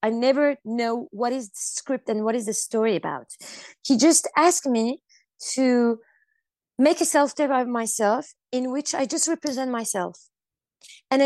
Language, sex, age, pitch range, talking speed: English, female, 20-39, 215-285 Hz, 160 wpm